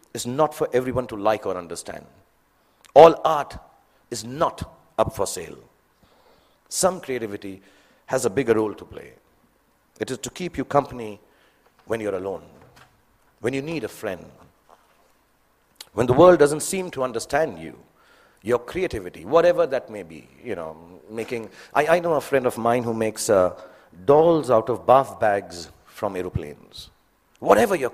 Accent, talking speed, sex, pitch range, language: Indian, 155 wpm, male, 115-160 Hz, English